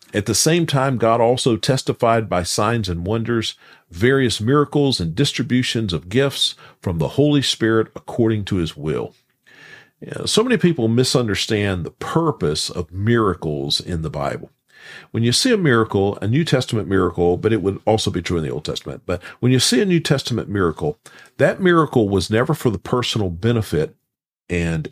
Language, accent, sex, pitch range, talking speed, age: English, American, male, 90-130 Hz, 175 wpm, 50-69